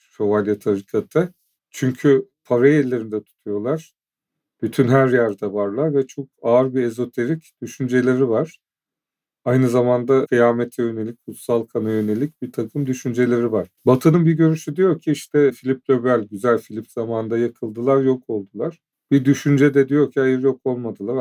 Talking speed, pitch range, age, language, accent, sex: 135 wpm, 115-145 Hz, 40-59, Turkish, native, male